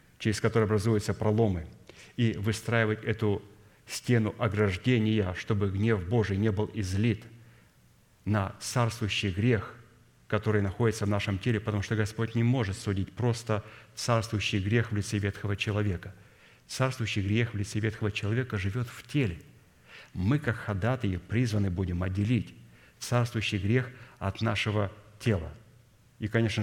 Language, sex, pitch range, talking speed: Russian, male, 100-115 Hz, 130 wpm